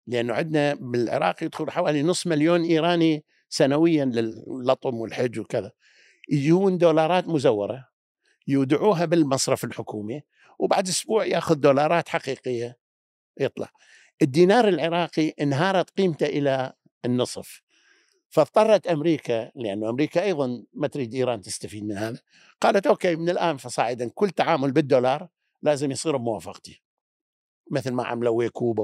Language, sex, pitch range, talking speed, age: Arabic, male, 120-170 Hz, 115 wpm, 50-69